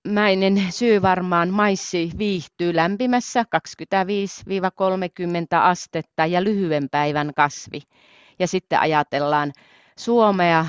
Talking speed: 85 wpm